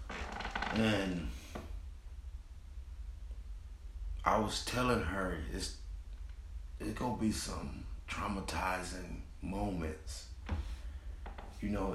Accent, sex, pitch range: American, male, 75-120 Hz